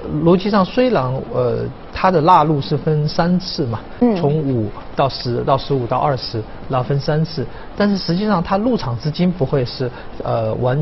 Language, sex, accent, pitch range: Chinese, male, native, 120-175 Hz